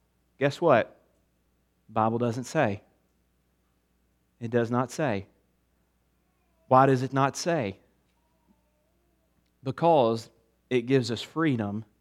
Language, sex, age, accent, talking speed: English, male, 30-49, American, 100 wpm